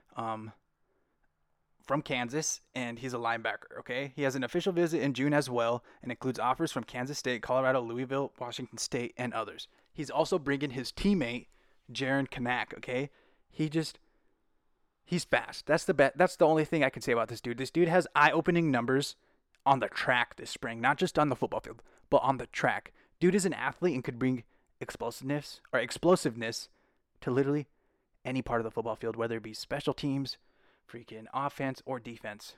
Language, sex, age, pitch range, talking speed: English, male, 20-39, 115-150 Hz, 185 wpm